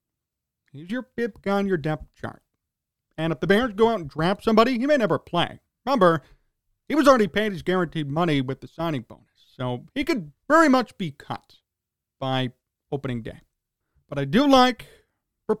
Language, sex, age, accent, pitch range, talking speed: English, male, 40-59, American, 150-225 Hz, 185 wpm